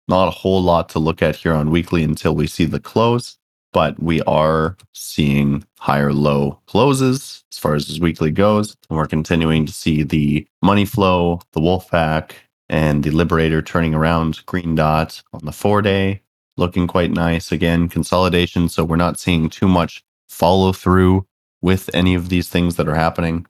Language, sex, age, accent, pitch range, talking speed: English, male, 30-49, American, 75-90 Hz, 180 wpm